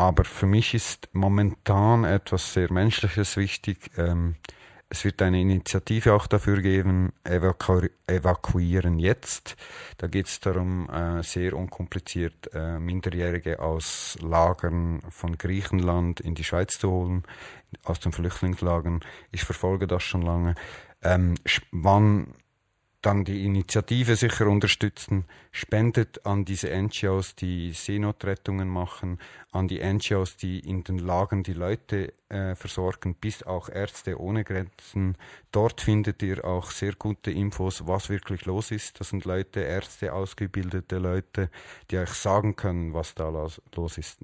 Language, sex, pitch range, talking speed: German, male, 90-100 Hz, 135 wpm